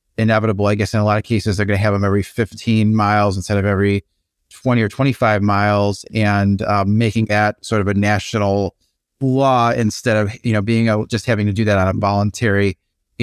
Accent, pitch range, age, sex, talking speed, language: American, 100-110 Hz, 30-49, male, 210 wpm, English